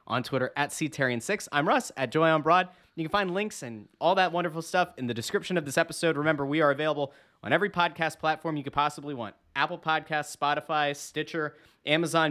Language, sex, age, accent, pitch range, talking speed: English, male, 30-49, American, 135-175 Hz, 205 wpm